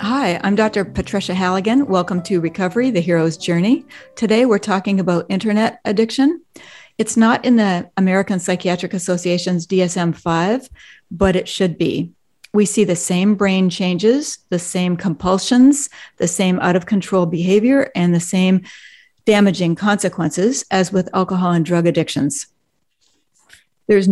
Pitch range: 180-225 Hz